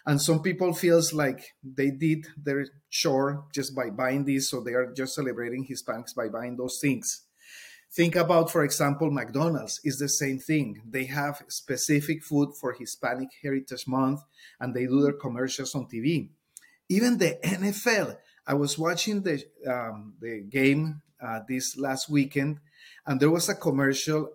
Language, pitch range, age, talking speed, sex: English, 130-160 Hz, 30-49, 160 wpm, male